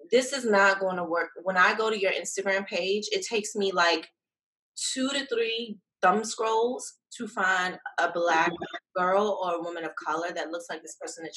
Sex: female